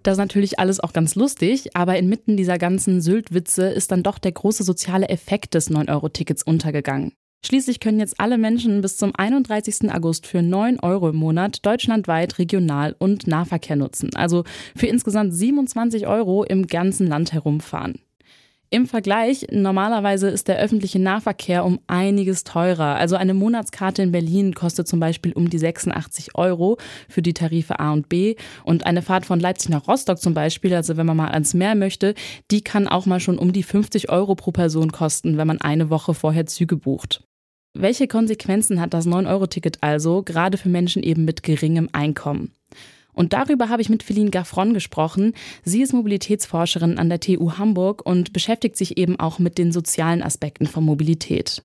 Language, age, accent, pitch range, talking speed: German, 20-39, German, 165-205 Hz, 175 wpm